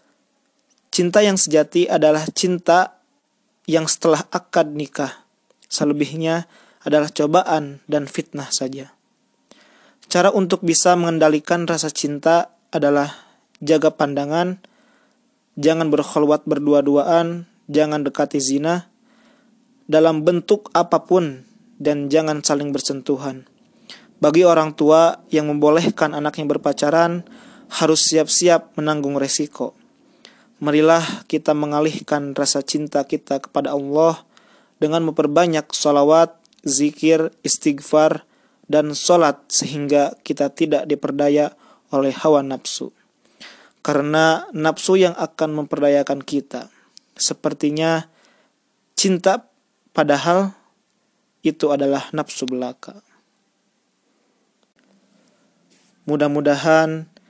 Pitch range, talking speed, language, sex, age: 145-180 Hz, 90 wpm, Indonesian, male, 20-39